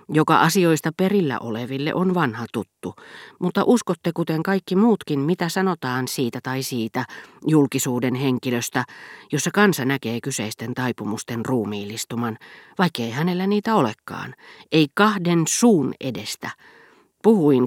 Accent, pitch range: native, 120-170 Hz